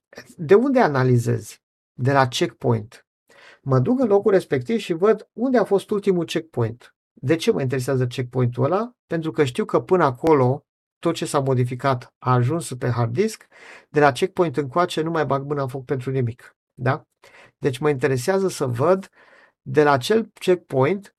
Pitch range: 130-175 Hz